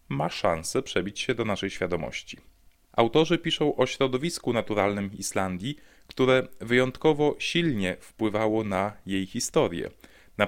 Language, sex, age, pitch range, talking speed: Polish, male, 30-49, 100-125 Hz, 120 wpm